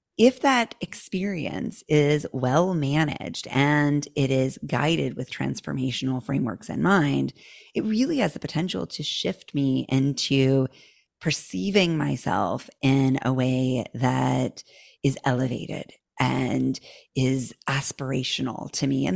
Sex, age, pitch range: female, 30-49, 135-200 Hz